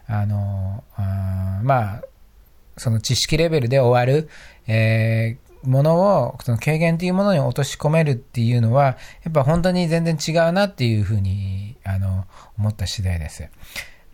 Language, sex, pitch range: Japanese, male, 110-155 Hz